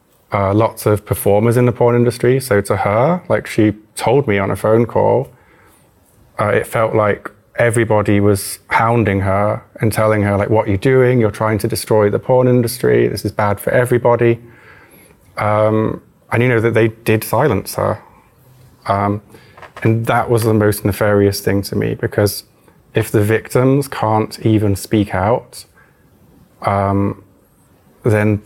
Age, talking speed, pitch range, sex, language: 20-39, 160 wpm, 100-115 Hz, male, Hungarian